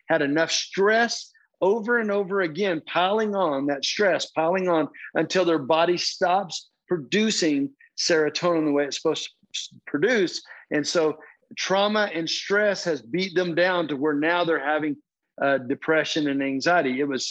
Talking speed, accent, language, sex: 155 wpm, American, English, male